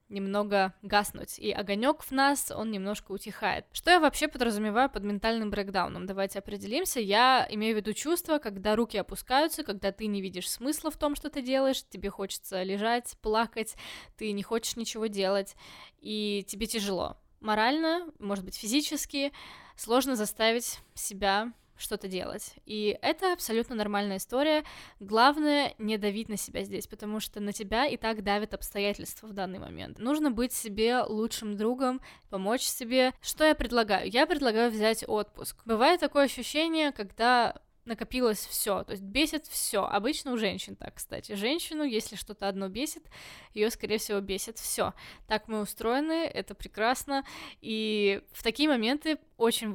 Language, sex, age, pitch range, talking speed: Russian, female, 10-29, 205-260 Hz, 155 wpm